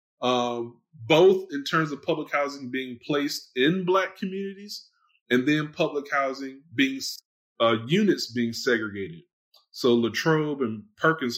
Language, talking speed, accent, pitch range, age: English, 130 wpm, American, 110-140 Hz, 20-39